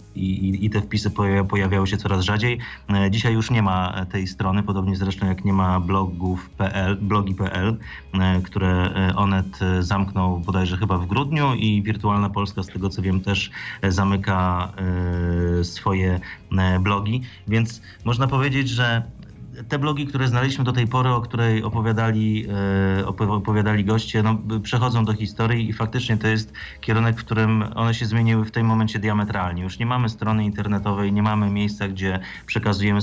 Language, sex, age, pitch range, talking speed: Polish, male, 30-49, 95-115 Hz, 145 wpm